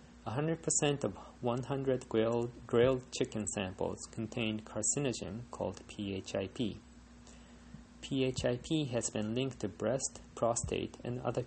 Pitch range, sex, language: 105-130 Hz, male, Japanese